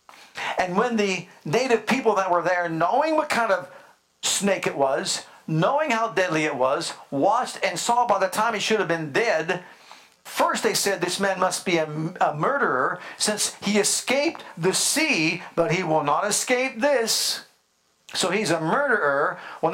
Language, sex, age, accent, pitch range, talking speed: English, male, 50-69, American, 185-230 Hz, 175 wpm